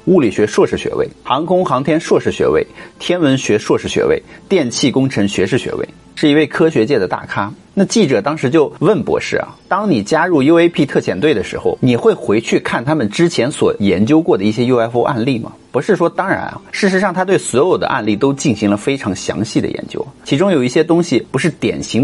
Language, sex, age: Chinese, male, 30-49